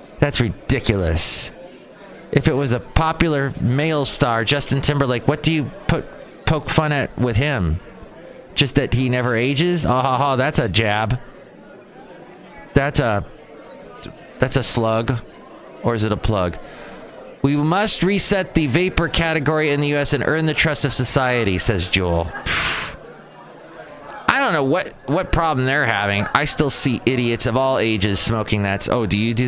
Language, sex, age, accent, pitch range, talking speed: English, male, 30-49, American, 110-145 Hz, 160 wpm